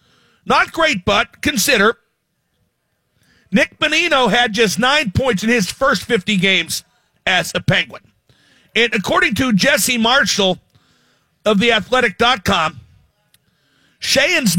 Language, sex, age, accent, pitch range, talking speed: English, male, 50-69, American, 195-245 Hz, 105 wpm